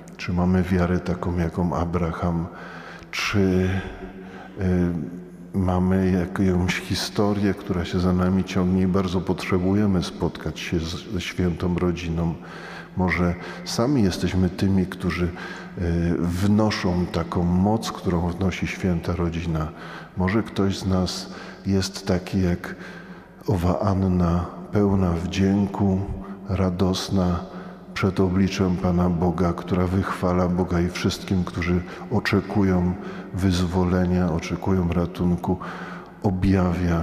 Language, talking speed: Polish, 105 wpm